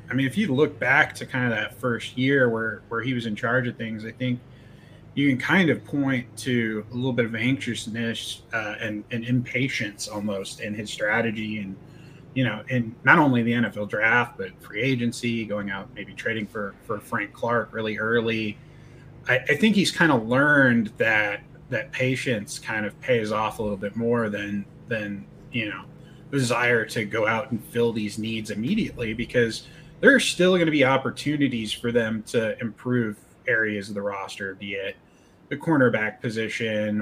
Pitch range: 105-135 Hz